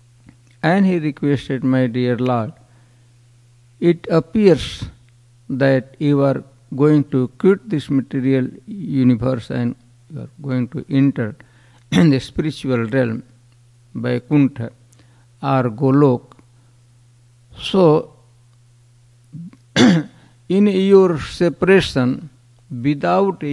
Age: 60-79